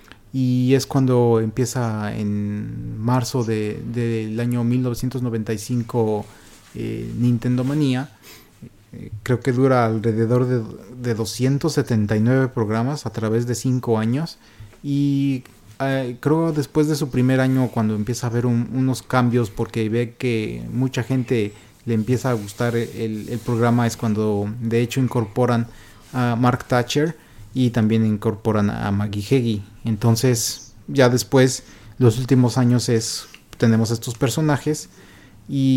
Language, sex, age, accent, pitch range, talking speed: Spanish, male, 30-49, Mexican, 110-130 Hz, 135 wpm